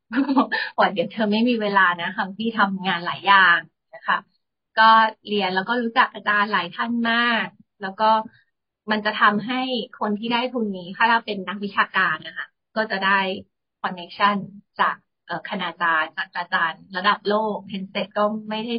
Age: 30-49